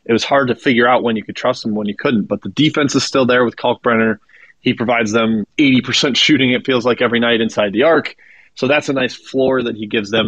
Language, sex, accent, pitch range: English, male, American, 110-135 Hz